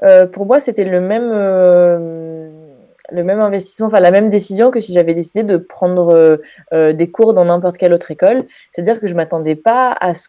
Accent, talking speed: French, 210 wpm